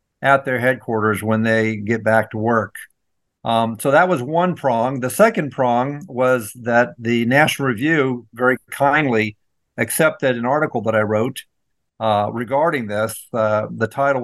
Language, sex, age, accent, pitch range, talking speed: English, male, 50-69, American, 110-135 Hz, 155 wpm